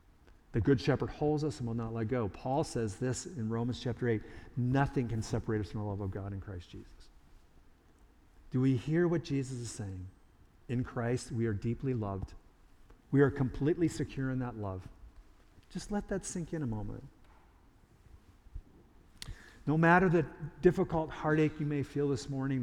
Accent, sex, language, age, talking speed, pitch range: American, male, English, 50-69, 175 wpm, 100-135 Hz